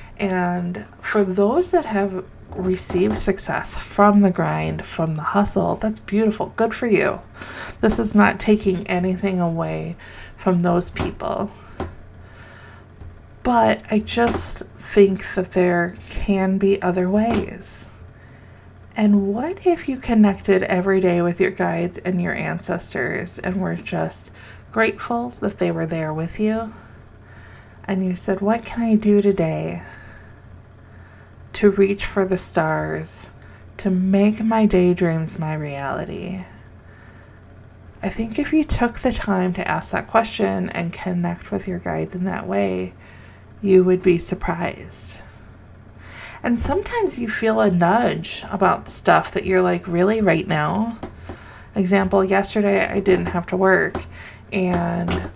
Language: English